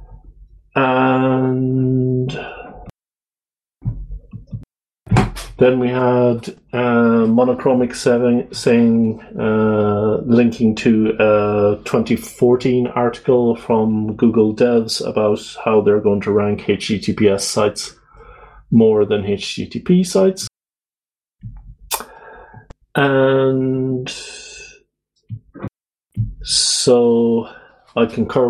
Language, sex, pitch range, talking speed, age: English, male, 110-130 Hz, 65 wpm, 40-59